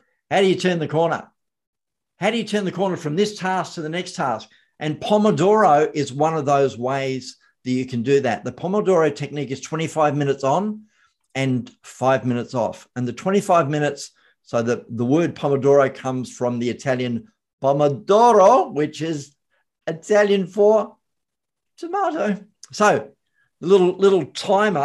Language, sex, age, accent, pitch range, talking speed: English, male, 50-69, Australian, 145-195 Hz, 155 wpm